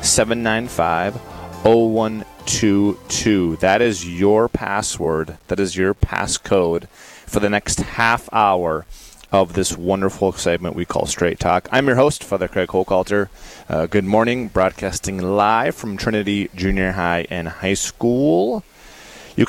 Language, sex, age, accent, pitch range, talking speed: English, male, 30-49, American, 90-110 Hz, 130 wpm